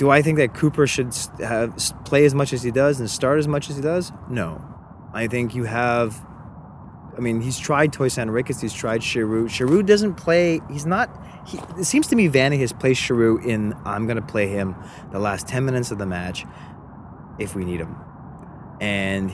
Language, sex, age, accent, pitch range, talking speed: English, male, 20-39, American, 105-145 Hz, 205 wpm